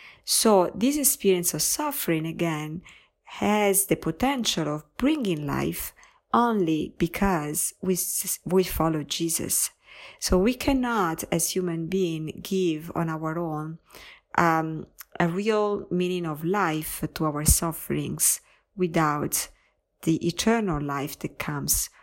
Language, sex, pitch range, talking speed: English, female, 160-205 Hz, 115 wpm